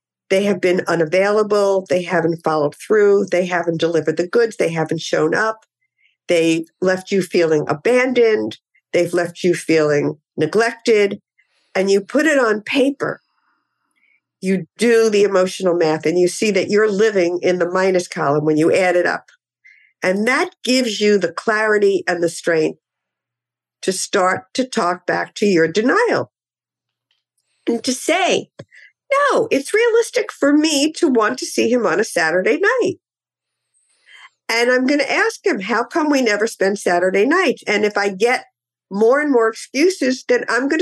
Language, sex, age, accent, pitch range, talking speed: English, female, 50-69, American, 175-245 Hz, 165 wpm